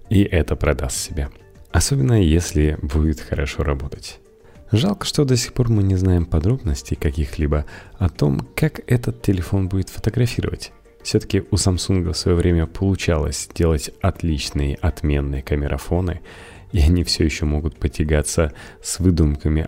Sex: male